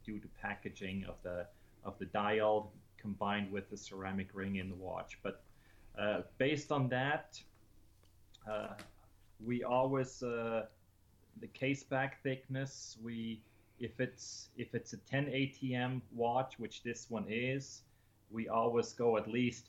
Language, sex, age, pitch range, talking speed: English, male, 30-49, 105-120 Hz, 145 wpm